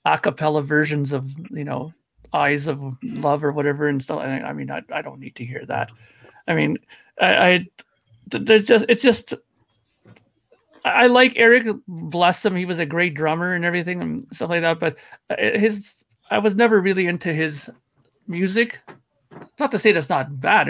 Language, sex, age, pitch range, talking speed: English, male, 40-59, 150-210 Hz, 175 wpm